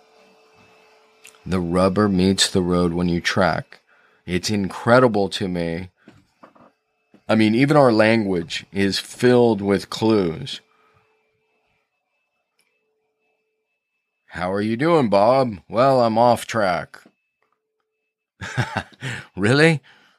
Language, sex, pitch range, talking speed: English, male, 95-125 Hz, 90 wpm